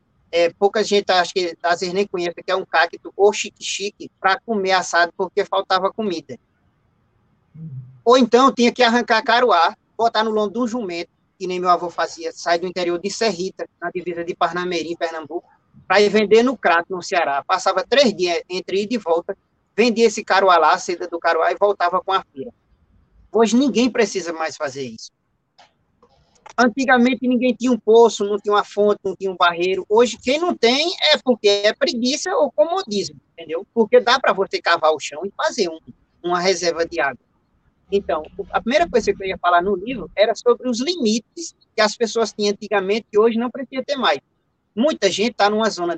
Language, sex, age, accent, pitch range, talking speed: Portuguese, male, 20-39, Brazilian, 175-240 Hz, 195 wpm